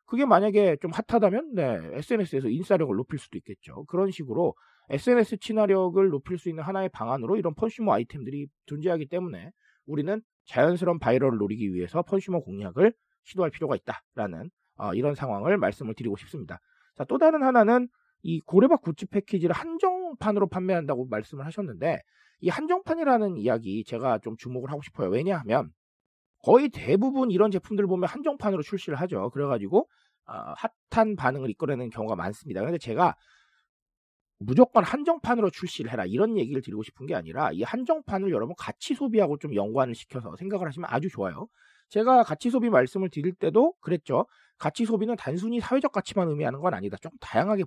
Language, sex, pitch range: Korean, male, 145-220 Hz